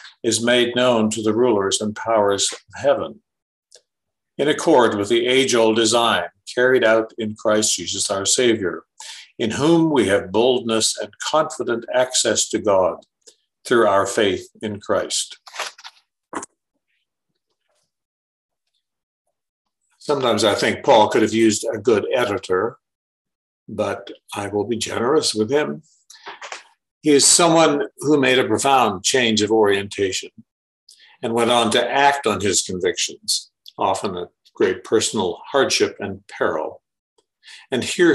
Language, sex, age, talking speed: English, male, 60-79, 130 wpm